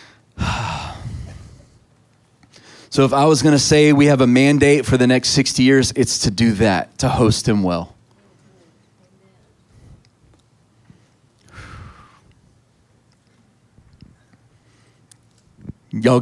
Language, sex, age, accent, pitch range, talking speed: English, male, 30-49, American, 115-140 Hz, 95 wpm